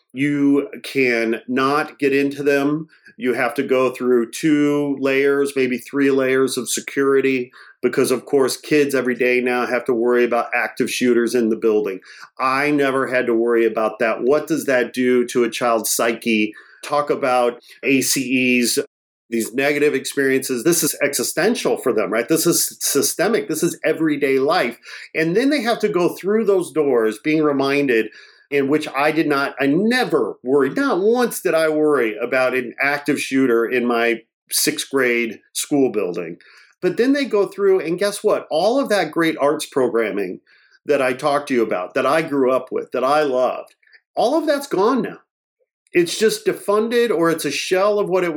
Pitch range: 125-200 Hz